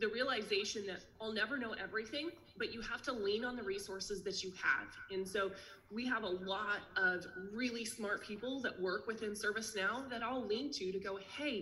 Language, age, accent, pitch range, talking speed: English, 20-39, American, 190-225 Hz, 195 wpm